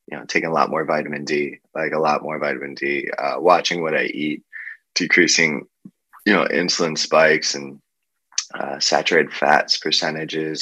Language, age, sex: English, 20-39, male